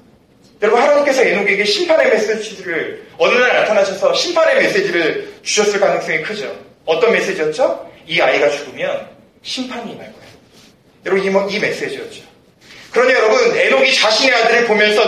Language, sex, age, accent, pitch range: Korean, male, 40-59, native, 220-315 Hz